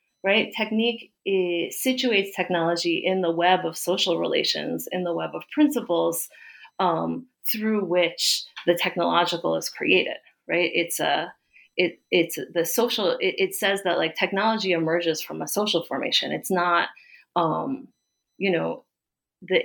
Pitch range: 170-195 Hz